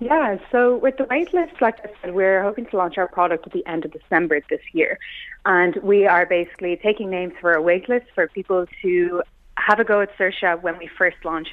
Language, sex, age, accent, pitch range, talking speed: English, female, 30-49, Irish, 180-215 Hz, 220 wpm